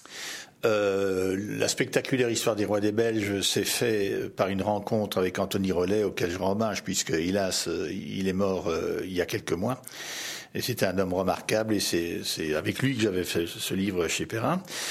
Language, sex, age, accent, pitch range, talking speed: French, male, 60-79, French, 95-125 Hz, 190 wpm